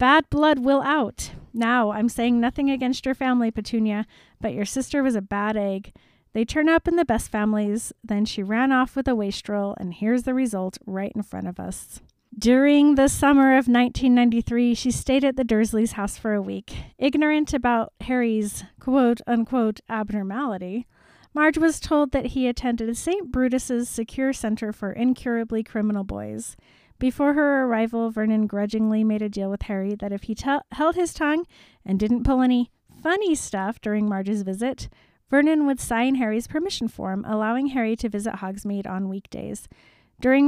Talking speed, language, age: 170 wpm, English, 40-59